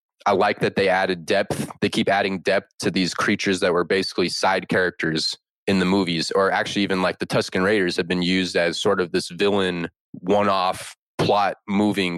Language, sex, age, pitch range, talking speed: English, male, 20-39, 90-105 Hz, 190 wpm